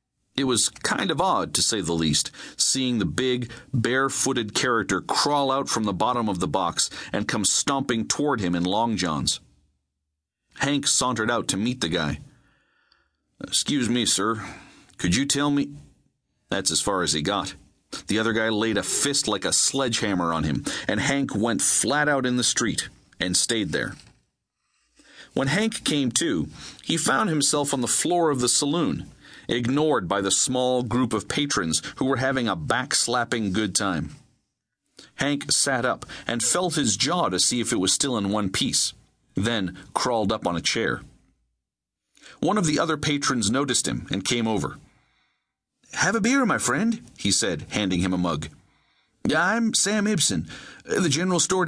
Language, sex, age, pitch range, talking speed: English, male, 40-59, 95-145 Hz, 170 wpm